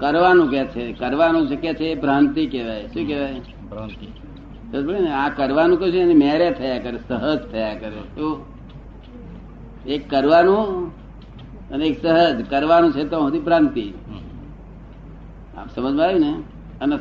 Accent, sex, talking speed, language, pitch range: native, male, 115 wpm, Gujarati, 135-180 Hz